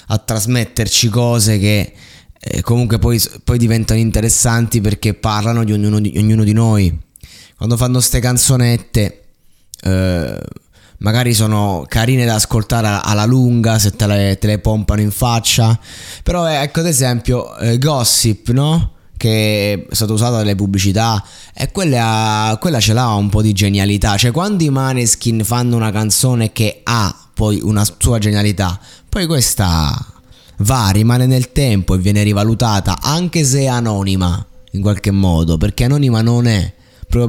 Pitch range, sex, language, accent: 95-120 Hz, male, Italian, native